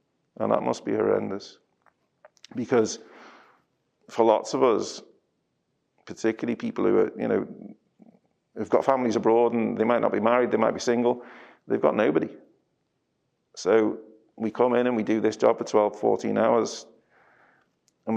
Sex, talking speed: male, 155 wpm